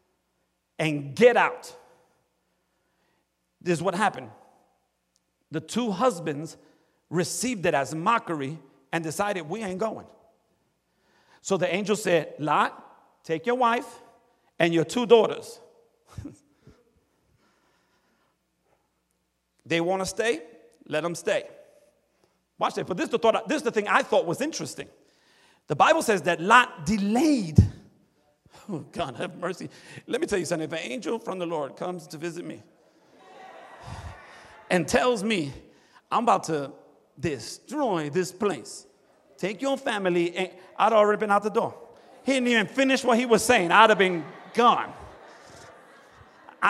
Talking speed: 135 wpm